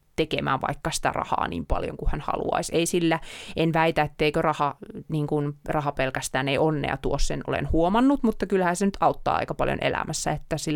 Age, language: 30-49, Finnish